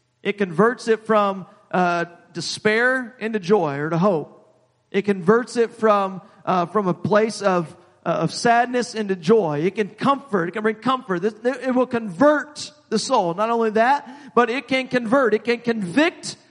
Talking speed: 170 wpm